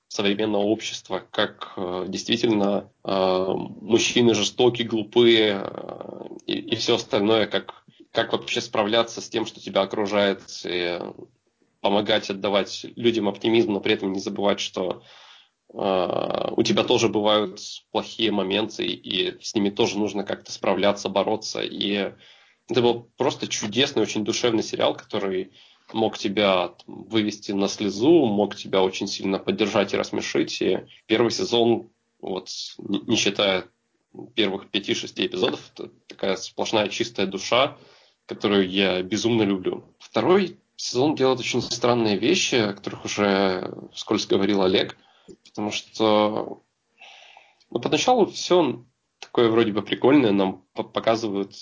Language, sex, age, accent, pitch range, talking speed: Russian, male, 20-39, native, 100-115 Hz, 125 wpm